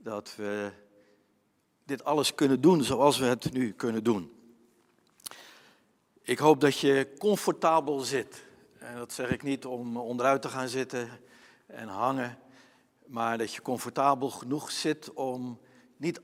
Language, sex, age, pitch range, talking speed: Dutch, male, 60-79, 120-150 Hz, 140 wpm